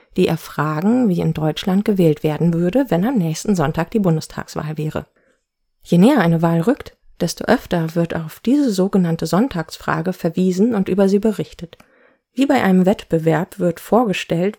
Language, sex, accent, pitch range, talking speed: German, female, German, 165-205 Hz, 160 wpm